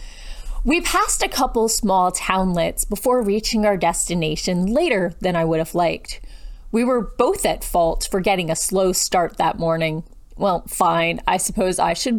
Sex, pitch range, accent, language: female, 175-255 Hz, American, English